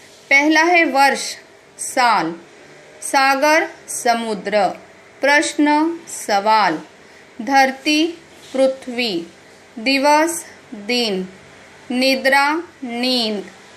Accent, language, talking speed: native, Marathi, 60 wpm